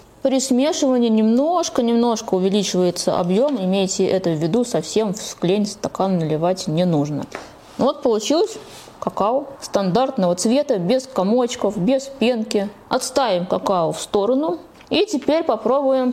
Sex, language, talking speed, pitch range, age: female, Russian, 115 wpm, 180-250 Hz, 20-39